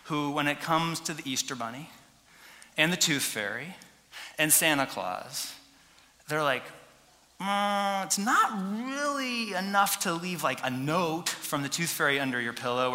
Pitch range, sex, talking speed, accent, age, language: 140-200 Hz, male, 160 wpm, American, 20-39, English